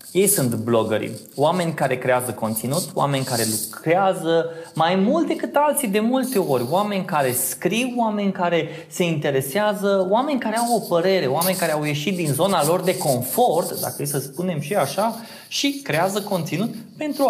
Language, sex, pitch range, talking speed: Romanian, male, 145-195 Hz, 165 wpm